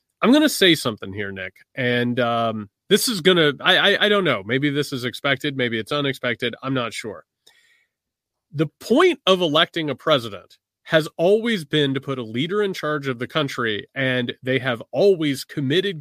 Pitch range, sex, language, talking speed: 120-160 Hz, male, English, 190 wpm